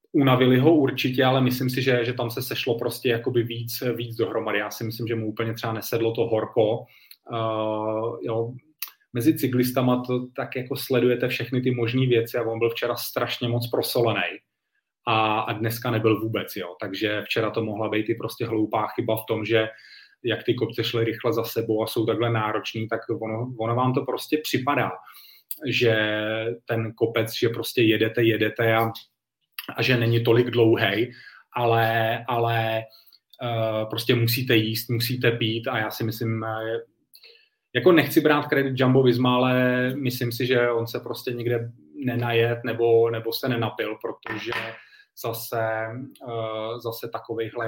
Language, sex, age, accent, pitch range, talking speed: Czech, male, 30-49, native, 110-125 Hz, 160 wpm